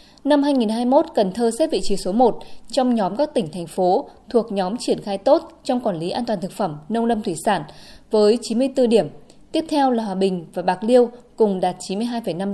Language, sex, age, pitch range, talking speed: Vietnamese, female, 20-39, 195-255 Hz, 215 wpm